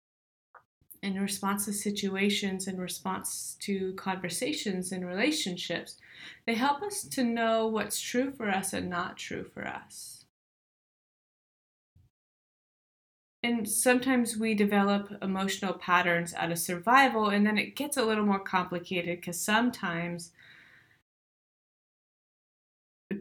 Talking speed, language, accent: 115 wpm, English, American